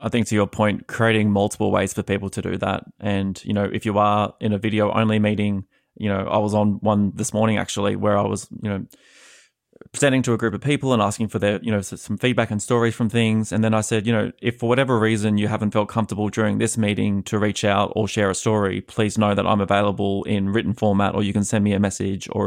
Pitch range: 100-110 Hz